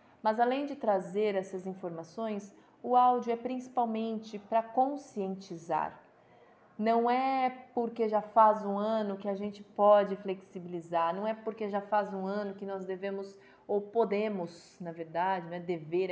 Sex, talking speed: female, 150 wpm